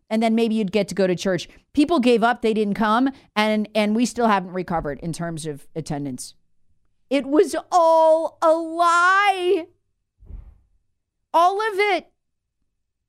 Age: 40-59